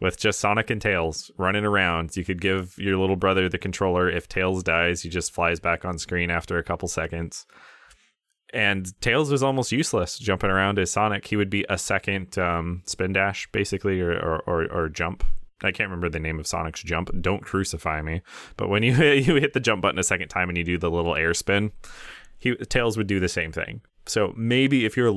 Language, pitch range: English, 85-110 Hz